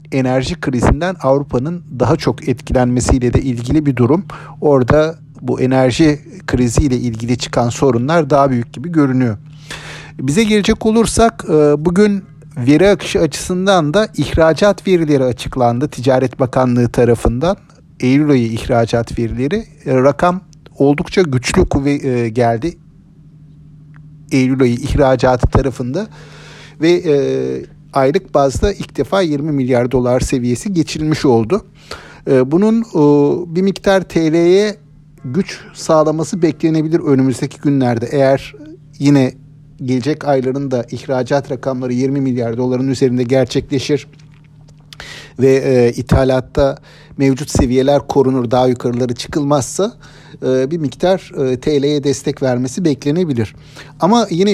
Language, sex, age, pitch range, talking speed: Turkish, male, 50-69, 130-160 Hz, 105 wpm